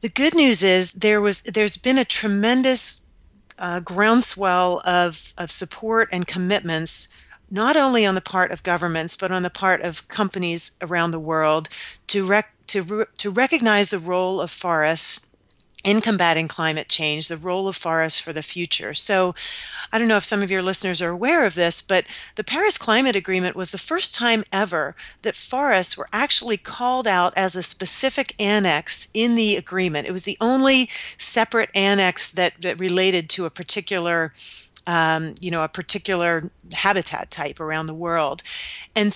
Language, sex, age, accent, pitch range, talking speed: English, female, 40-59, American, 170-210 Hz, 175 wpm